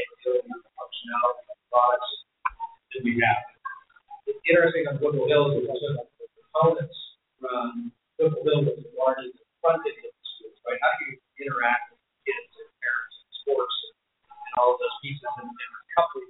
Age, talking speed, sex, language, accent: 40-59, 145 wpm, male, English, American